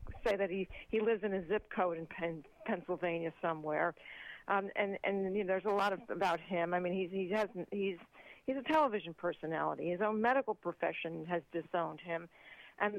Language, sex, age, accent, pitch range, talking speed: English, female, 50-69, American, 180-215 Hz, 180 wpm